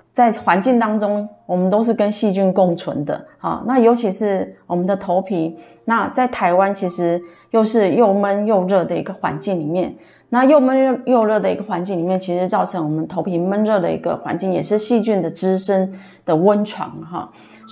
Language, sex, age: Chinese, female, 20-39